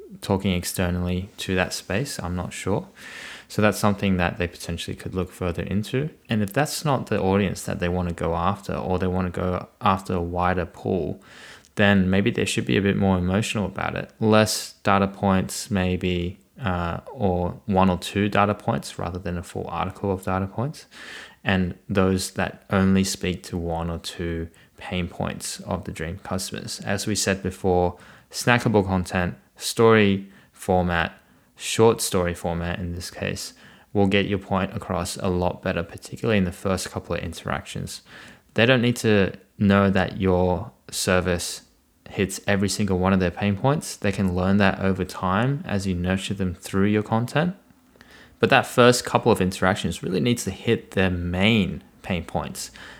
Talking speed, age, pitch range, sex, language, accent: 175 wpm, 20-39, 90-100 Hz, male, English, Australian